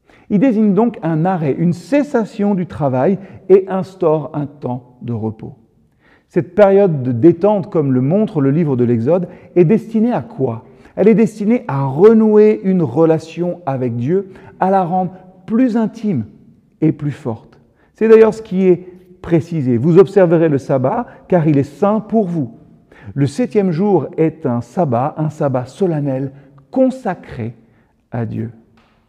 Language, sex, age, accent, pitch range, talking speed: French, male, 50-69, French, 135-195 Hz, 155 wpm